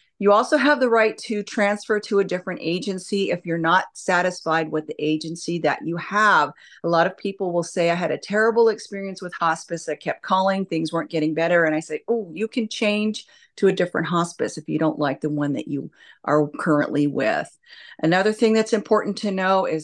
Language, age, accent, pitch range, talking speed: English, 40-59, American, 160-205 Hz, 210 wpm